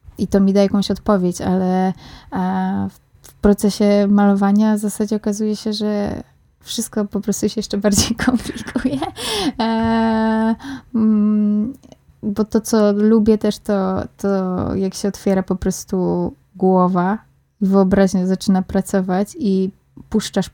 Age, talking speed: 20-39, 115 wpm